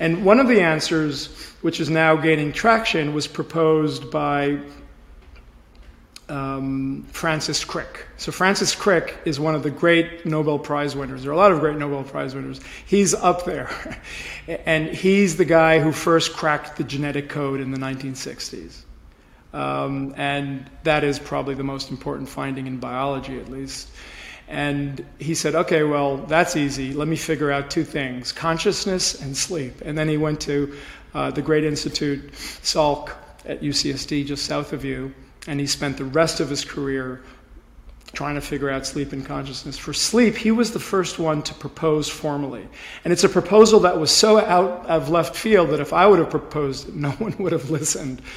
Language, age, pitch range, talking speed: English, 40-59, 140-165 Hz, 180 wpm